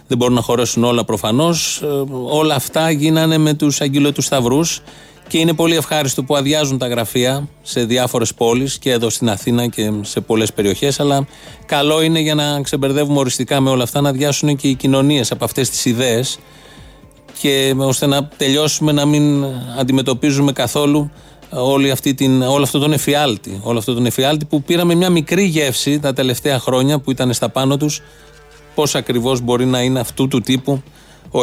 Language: Greek